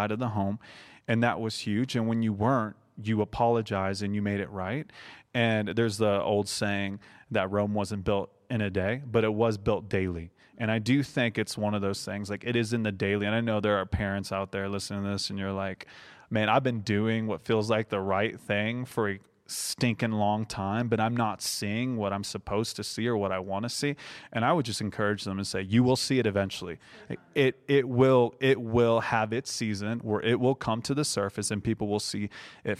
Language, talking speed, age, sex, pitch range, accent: English, 230 wpm, 30-49, male, 100-115 Hz, American